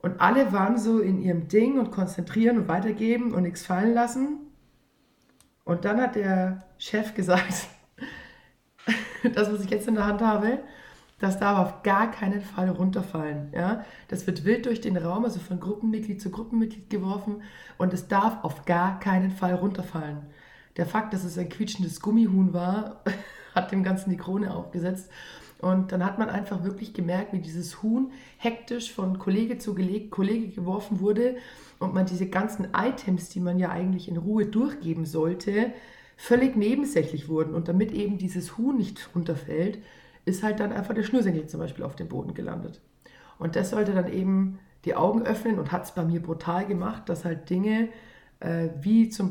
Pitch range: 180-215 Hz